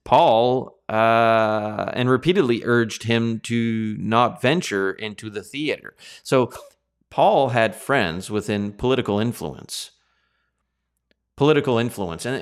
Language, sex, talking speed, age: English, male, 105 wpm, 30-49